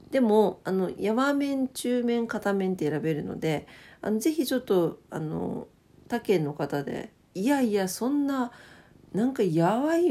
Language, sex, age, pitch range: Japanese, female, 50-69, 160-230 Hz